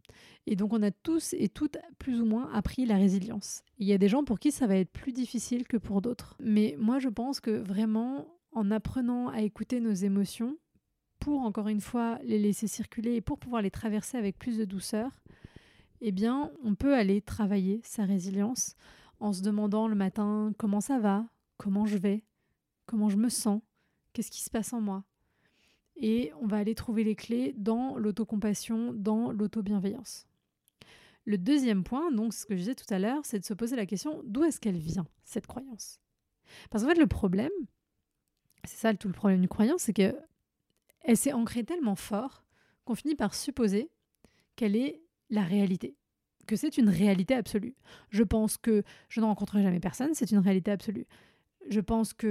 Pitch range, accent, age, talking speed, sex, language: 205-245 Hz, French, 20-39, 190 wpm, female, French